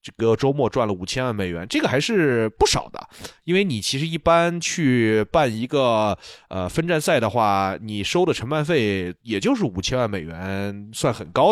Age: 20-39